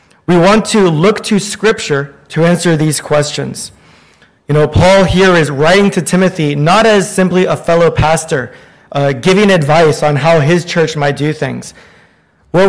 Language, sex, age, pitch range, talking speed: English, male, 20-39, 155-190 Hz, 165 wpm